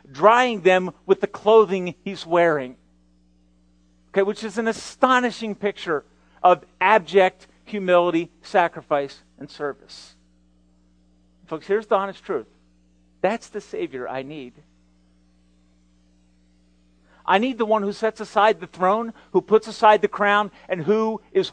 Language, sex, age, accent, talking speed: English, male, 50-69, American, 130 wpm